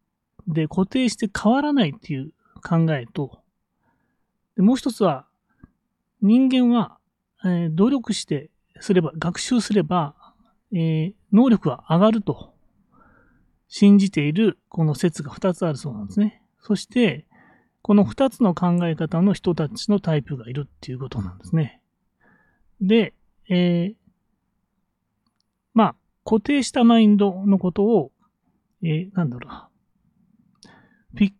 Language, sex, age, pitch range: Japanese, male, 30-49, 160-220 Hz